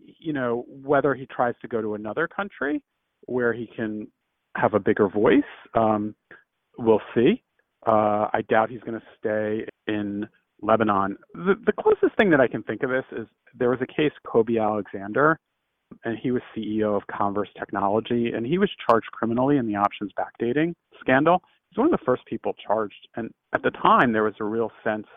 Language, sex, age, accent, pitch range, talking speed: English, male, 40-59, American, 105-130 Hz, 190 wpm